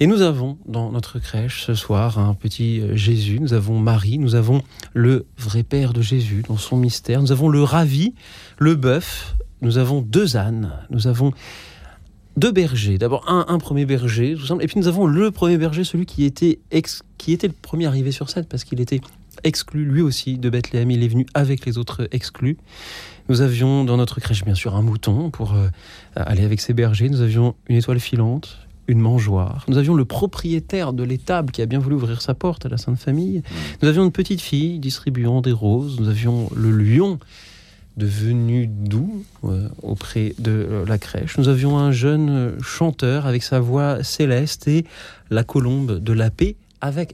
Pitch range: 110-155 Hz